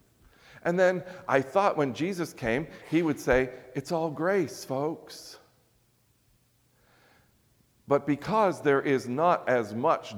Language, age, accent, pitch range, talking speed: English, 50-69, American, 125-185 Hz, 125 wpm